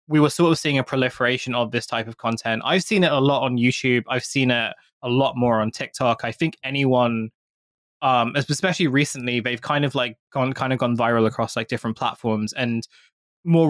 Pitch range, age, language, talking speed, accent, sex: 115-140 Hz, 20-39, English, 210 wpm, British, male